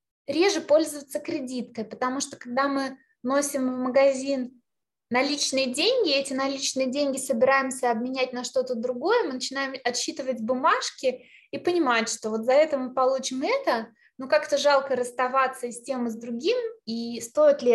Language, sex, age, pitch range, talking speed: Russian, female, 20-39, 245-285 Hz, 150 wpm